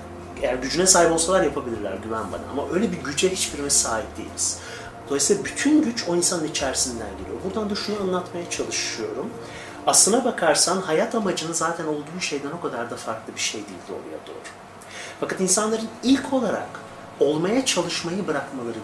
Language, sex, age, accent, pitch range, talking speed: Turkish, male, 40-59, native, 140-185 Hz, 155 wpm